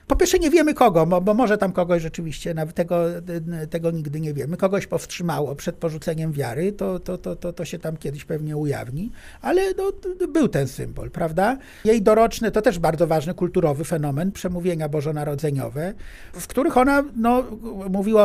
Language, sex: Polish, male